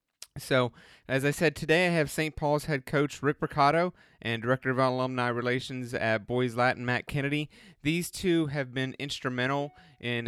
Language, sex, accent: English, male, American